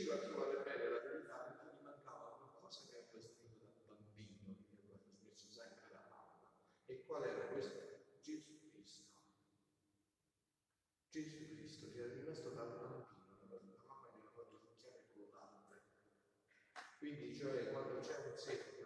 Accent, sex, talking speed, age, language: native, male, 170 wpm, 40-59, Italian